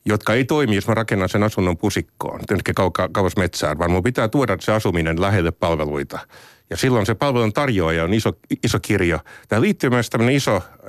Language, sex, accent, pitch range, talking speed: Finnish, male, native, 90-120 Hz, 190 wpm